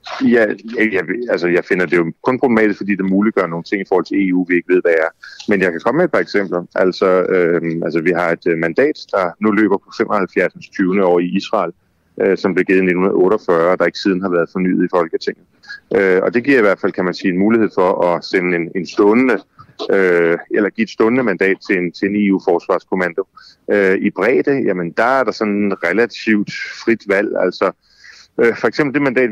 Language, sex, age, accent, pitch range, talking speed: Danish, male, 30-49, native, 90-115 Hz, 220 wpm